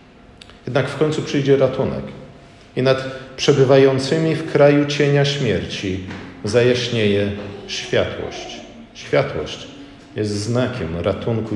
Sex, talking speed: male, 95 wpm